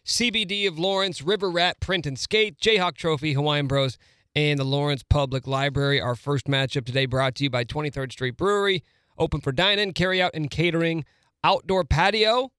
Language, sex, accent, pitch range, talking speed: English, male, American, 145-185 Hz, 170 wpm